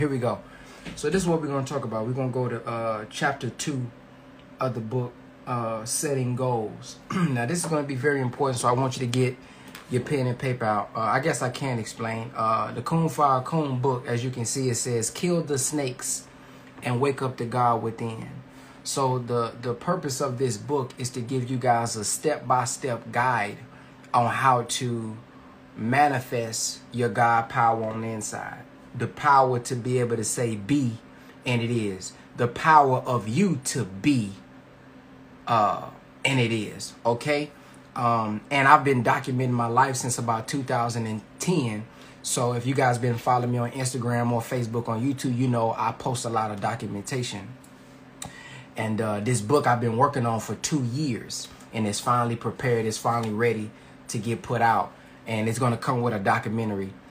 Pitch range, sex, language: 115-135 Hz, male, English